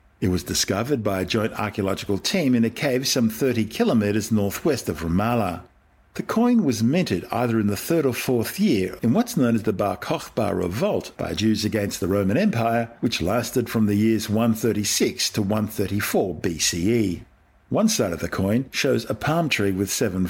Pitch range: 95-120 Hz